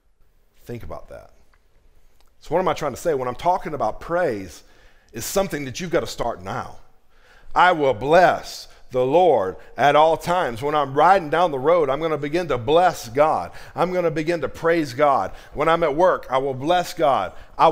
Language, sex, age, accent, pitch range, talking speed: English, male, 40-59, American, 115-160 Hz, 205 wpm